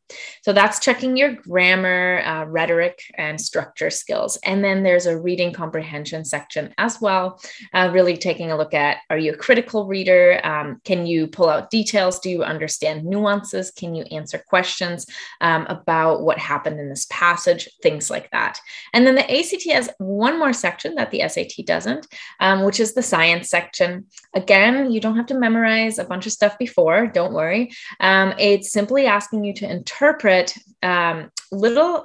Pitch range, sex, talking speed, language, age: 170-225 Hz, female, 180 wpm, English, 20-39